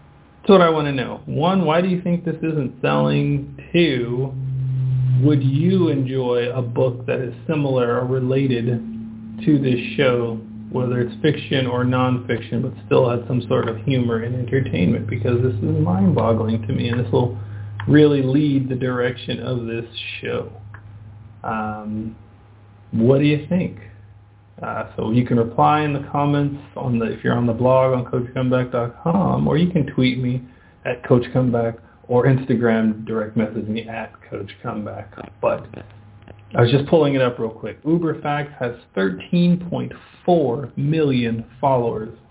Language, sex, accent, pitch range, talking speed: English, male, American, 115-135 Hz, 150 wpm